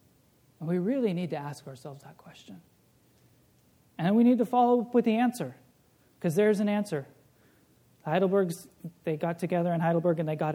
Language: English